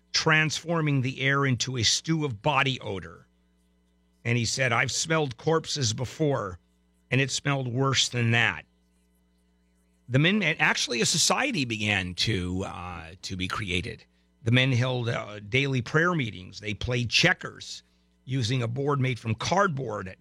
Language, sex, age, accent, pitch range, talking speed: English, male, 50-69, American, 95-140 Hz, 145 wpm